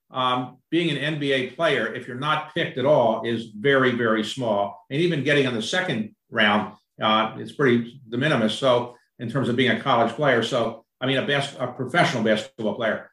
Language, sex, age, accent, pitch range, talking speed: English, male, 50-69, American, 115-145 Hz, 200 wpm